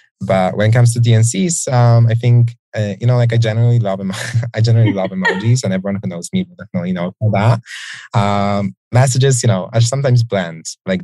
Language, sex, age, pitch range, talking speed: English, male, 20-39, 95-120 Hz, 210 wpm